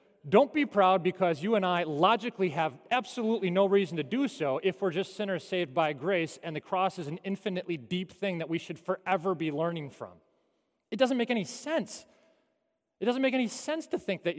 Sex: male